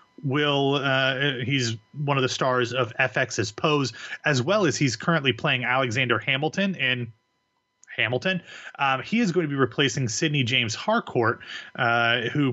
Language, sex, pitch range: English, male, 115-140 Hz